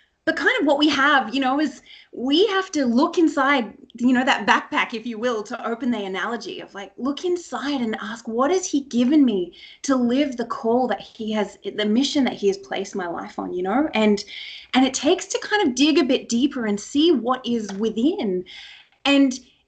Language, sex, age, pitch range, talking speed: English, female, 20-39, 225-305 Hz, 215 wpm